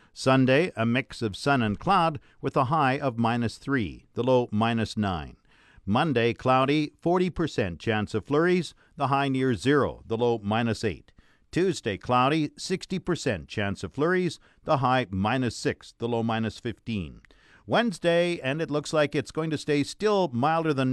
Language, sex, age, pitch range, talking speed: English, male, 50-69, 110-150 Hz, 165 wpm